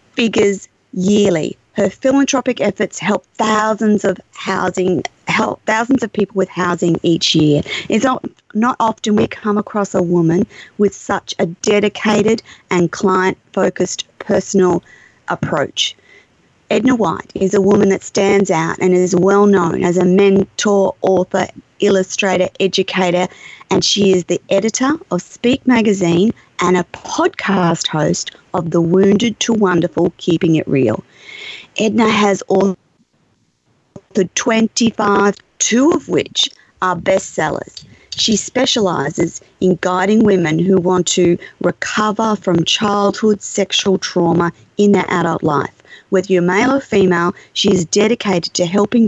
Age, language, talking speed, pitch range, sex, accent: 30-49, English, 135 wpm, 175-210 Hz, female, Australian